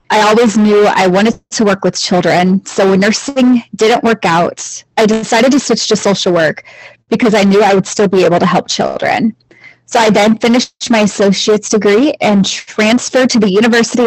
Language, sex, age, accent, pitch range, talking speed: English, female, 20-39, American, 190-230 Hz, 190 wpm